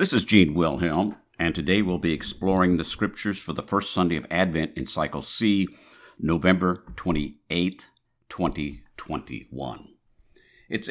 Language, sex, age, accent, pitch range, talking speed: English, male, 60-79, American, 85-100 Hz, 130 wpm